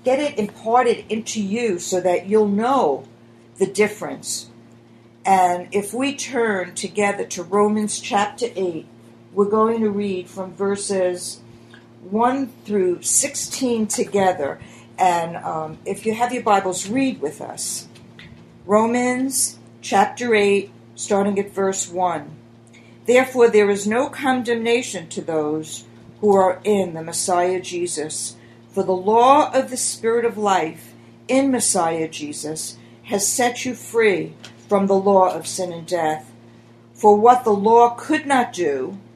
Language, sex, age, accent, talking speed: English, female, 60-79, American, 135 wpm